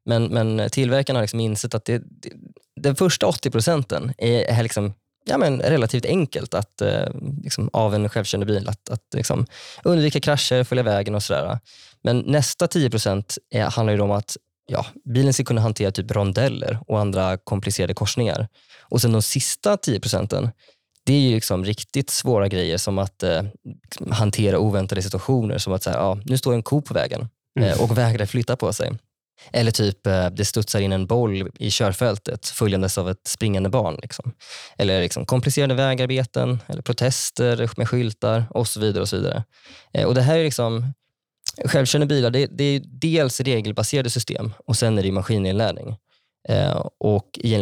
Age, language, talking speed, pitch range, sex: 20-39, Swedish, 175 wpm, 105-130 Hz, male